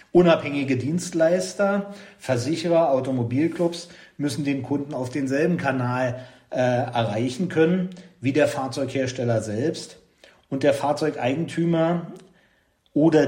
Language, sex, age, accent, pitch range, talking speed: German, male, 40-59, German, 130-155 Hz, 95 wpm